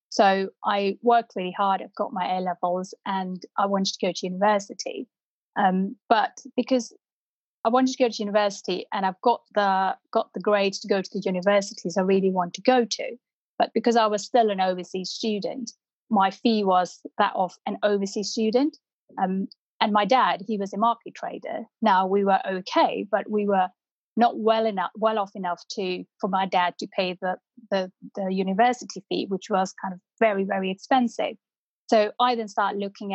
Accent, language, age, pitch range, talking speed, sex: British, English, 30-49, 190-230 Hz, 190 wpm, female